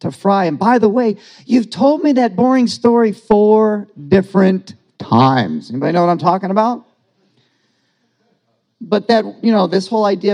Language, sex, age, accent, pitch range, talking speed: English, male, 50-69, American, 130-215 Hz, 165 wpm